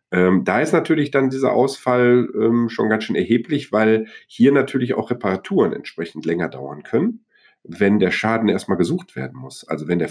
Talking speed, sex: 185 wpm, male